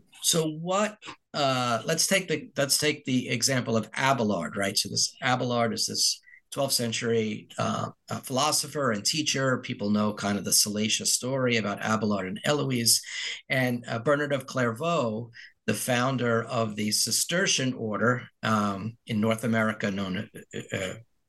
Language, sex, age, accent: English, male, 50-69, American